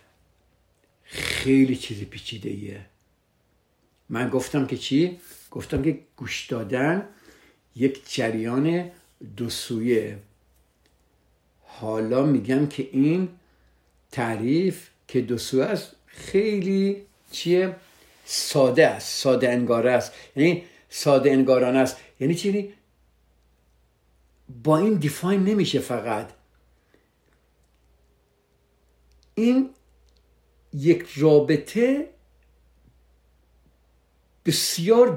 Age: 60-79